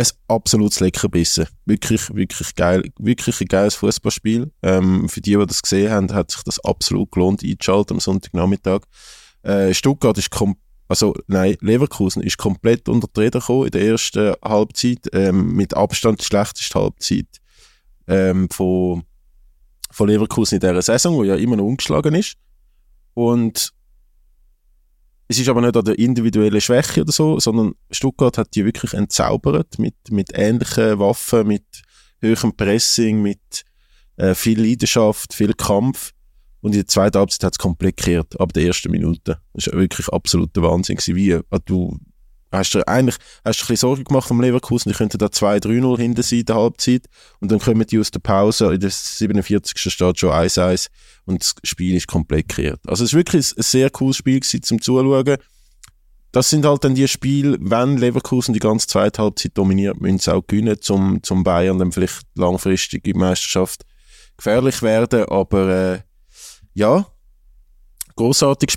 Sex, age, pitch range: male, 20-39, 95-120 Hz